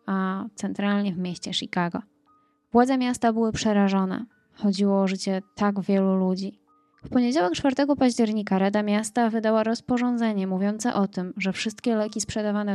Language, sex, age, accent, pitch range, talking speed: Polish, female, 20-39, native, 195-235 Hz, 140 wpm